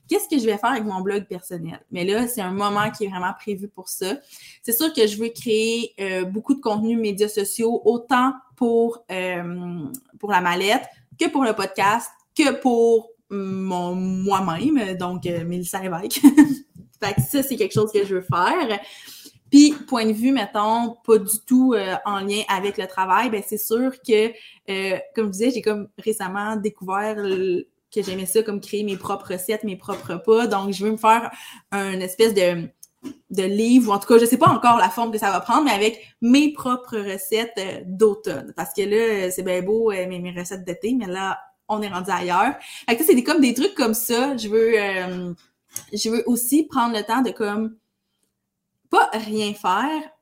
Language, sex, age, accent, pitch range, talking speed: French, female, 20-39, Canadian, 195-235 Hz, 200 wpm